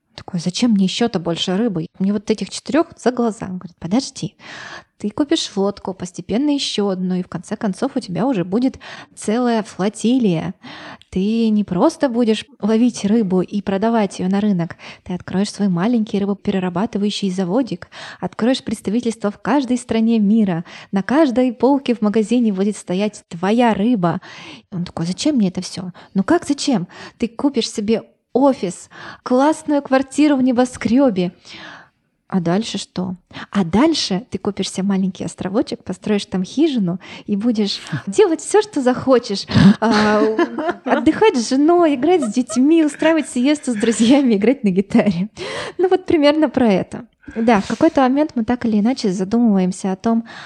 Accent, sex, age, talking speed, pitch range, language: native, female, 20-39, 150 wpm, 195-255 Hz, Russian